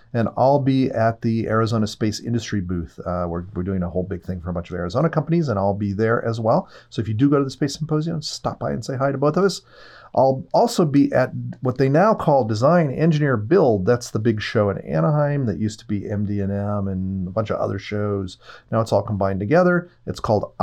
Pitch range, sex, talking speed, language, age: 100-140 Hz, male, 240 wpm, English, 30-49